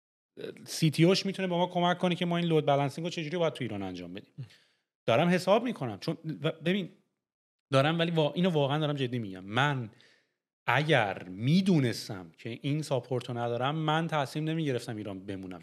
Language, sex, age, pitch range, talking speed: English, male, 30-49, 120-160 Hz, 170 wpm